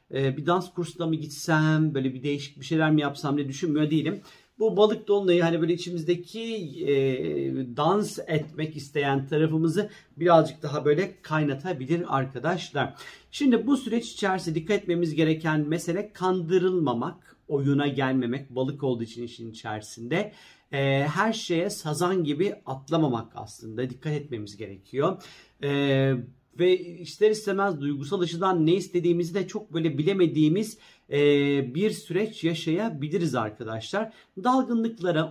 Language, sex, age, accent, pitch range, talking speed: Turkish, male, 40-59, native, 140-180 Hz, 125 wpm